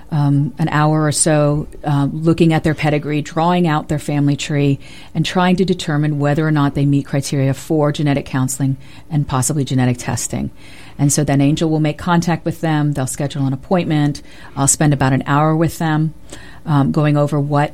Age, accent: 50-69, American